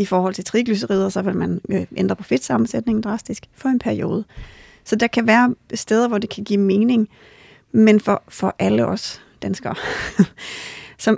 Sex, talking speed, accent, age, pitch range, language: female, 165 wpm, native, 30-49, 195-220 Hz, Danish